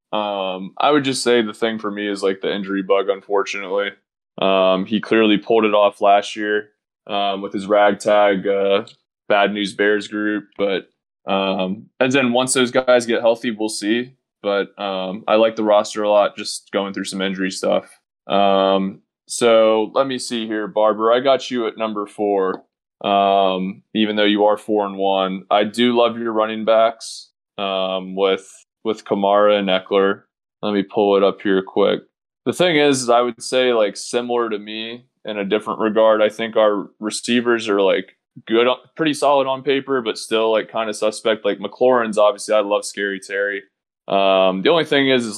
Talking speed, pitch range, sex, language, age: 190 wpm, 100-115 Hz, male, English, 20-39